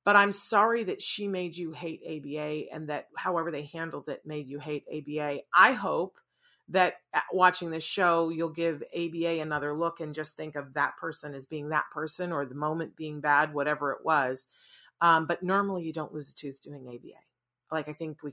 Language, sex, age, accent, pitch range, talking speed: English, female, 40-59, American, 155-200 Hz, 205 wpm